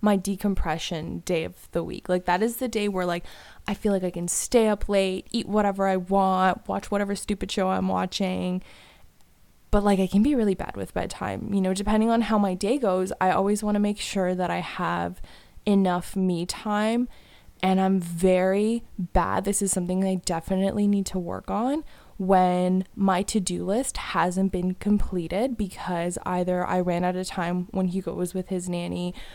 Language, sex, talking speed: English, female, 190 wpm